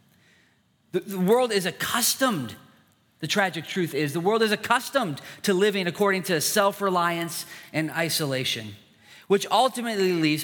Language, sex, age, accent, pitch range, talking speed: English, male, 40-59, American, 130-190 Hz, 125 wpm